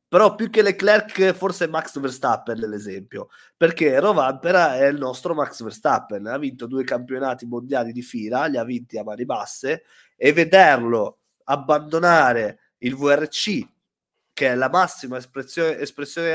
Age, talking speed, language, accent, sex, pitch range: 30-49, 145 wpm, Italian, native, male, 120-165 Hz